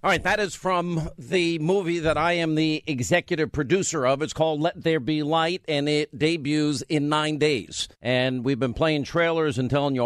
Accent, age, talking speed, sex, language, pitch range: American, 50-69, 205 wpm, male, English, 130-160 Hz